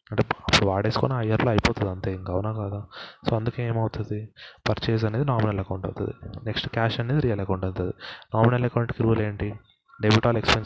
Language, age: Telugu, 20-39